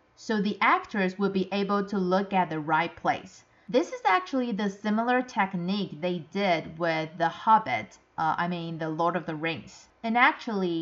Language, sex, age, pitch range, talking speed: English, female, 30-49, 175-215 Hz, 185 wpm